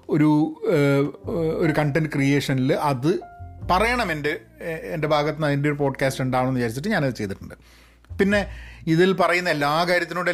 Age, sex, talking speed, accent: 30-49, male, 130 wpm, native